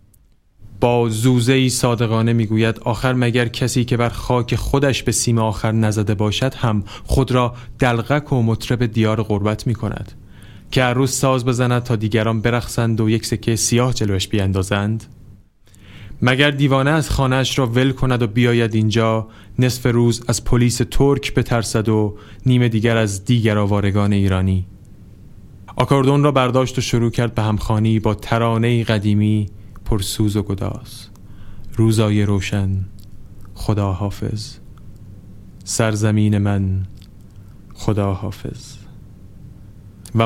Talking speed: 125 wpm